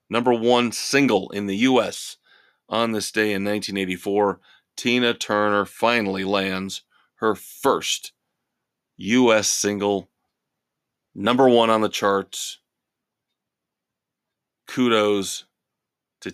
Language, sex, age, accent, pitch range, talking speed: English, male, 30-49, American, 100-115 Hz, 95 wpm